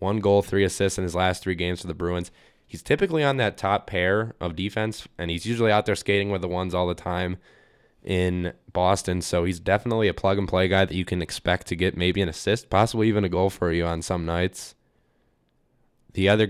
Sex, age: male, 10-29